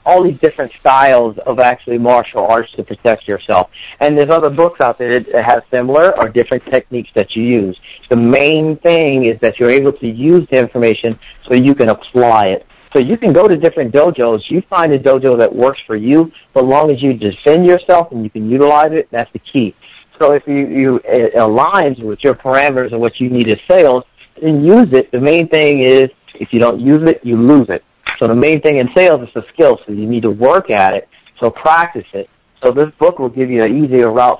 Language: English